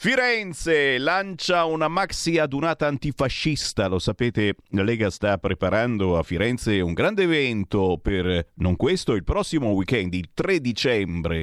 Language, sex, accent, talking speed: Italian, male, native, 135 wpm